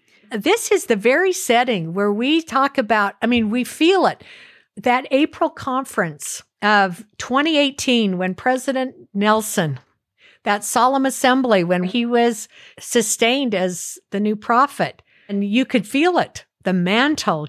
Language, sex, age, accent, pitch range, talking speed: English, female, 50-69, American, 190-240 Hz, 135 wpm